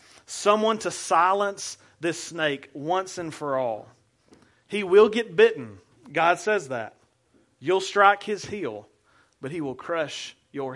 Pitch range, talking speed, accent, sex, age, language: 135-195 Hz, 140 wpm, American, male, 40-59, English